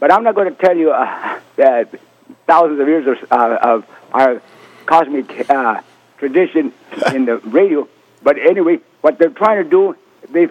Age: 60-79